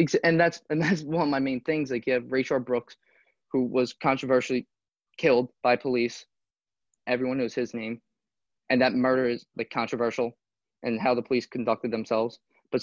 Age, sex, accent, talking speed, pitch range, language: 20-39, male, American, 175 wpm, 120-145 Hz, English